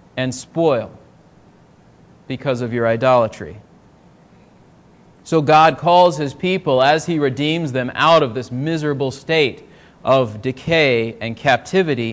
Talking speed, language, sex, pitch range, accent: 120 wpm, English, male, 140-185 Hz, American